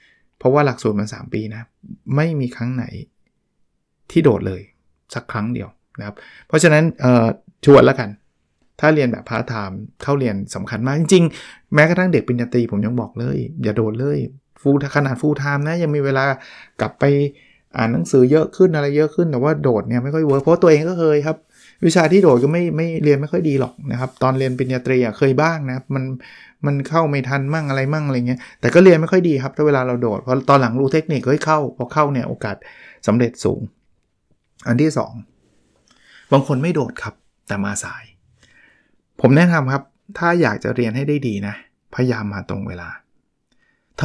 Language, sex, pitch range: Thai, male, 120-155 Hz